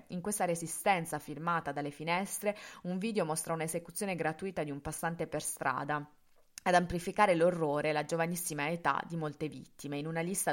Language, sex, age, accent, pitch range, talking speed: Italian, female, 20-39, native, 150-175 Hz, 160 wpm